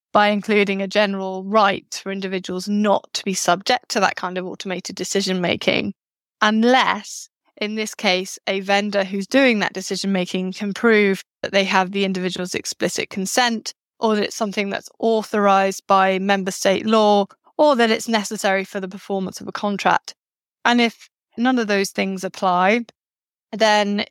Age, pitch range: 20-39, 190-215 Hz